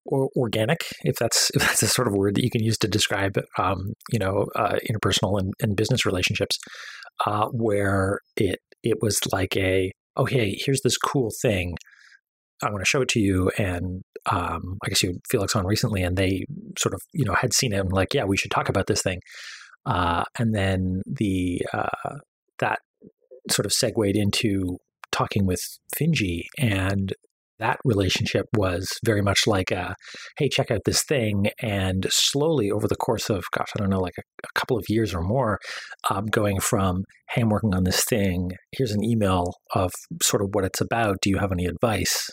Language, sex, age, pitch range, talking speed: English, male, 30-49, 95-115 Hz, 195 wpm